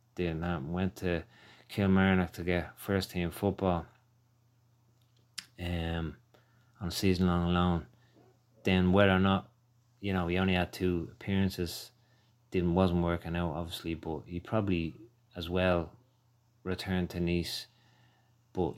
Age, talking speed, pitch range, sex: 30-49, 125 wpm, 85-120 Hz, male